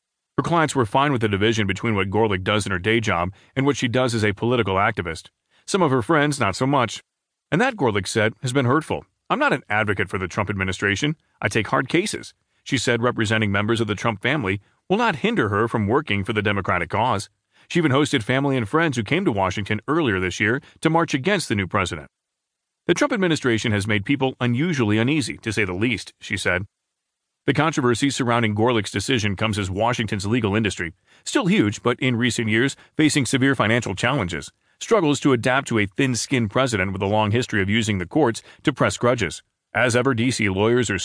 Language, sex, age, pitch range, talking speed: English, male, 30-49, 105-135 Hz, 210 wpm